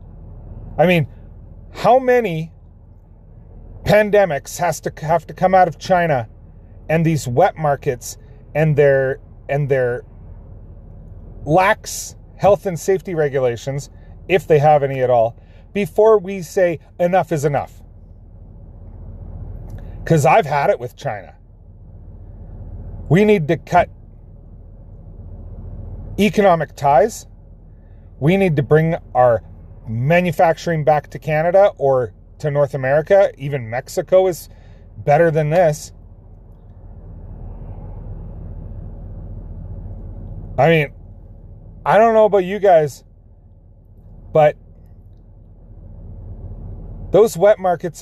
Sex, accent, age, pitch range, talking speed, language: male, American, 40-59, 95-155 Hz, 100 wpm, English